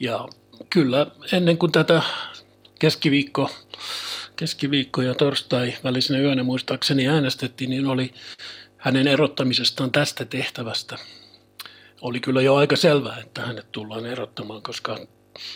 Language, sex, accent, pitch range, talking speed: Finnish, male, native, 120-145 Hz, 110 wpm